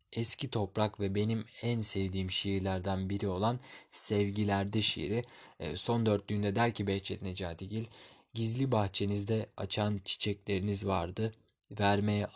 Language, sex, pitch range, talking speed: Turkish, male, 100-120 Hz, 110 wpm